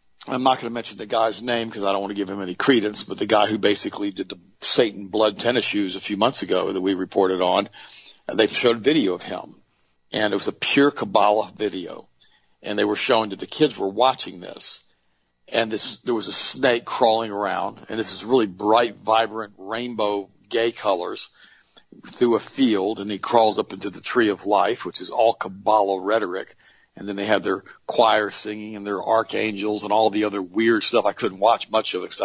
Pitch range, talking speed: 100-115 Hz, 215 wpm